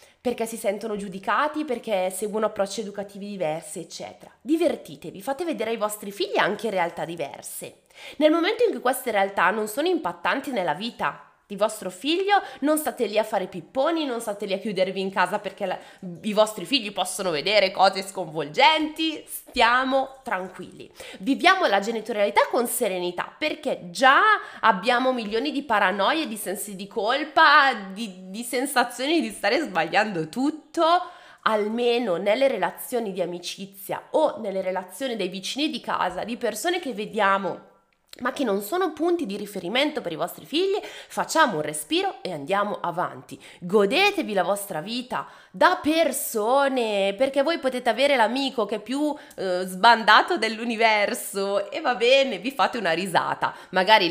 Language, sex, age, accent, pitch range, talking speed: Italian, female, 20-39, native, 190-275 Hz, 150 wpm